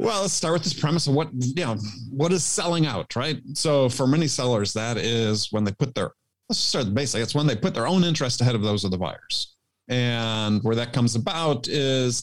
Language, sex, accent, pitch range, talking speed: English, male, American, 105-140 Hz, 240 wpm